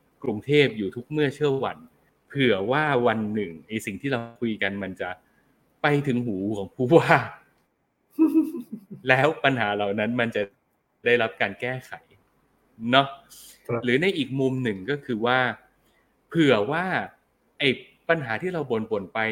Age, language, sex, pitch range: 20-39, Thai, male, 110-155 Hz